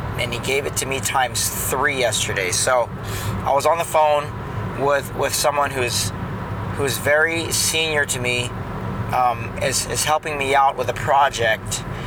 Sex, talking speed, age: male, 165 wpm, 30-49